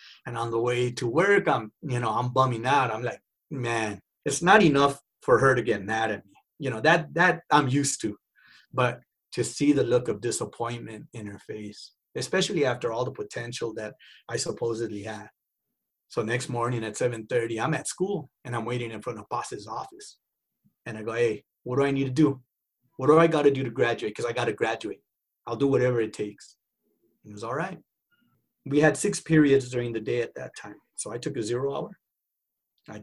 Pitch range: 115-140 Hz